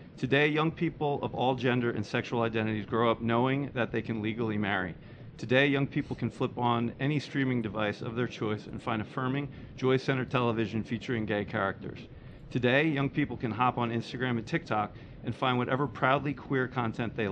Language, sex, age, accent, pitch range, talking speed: English, male, 40-59, American, 115-135 Hz, 185 wpm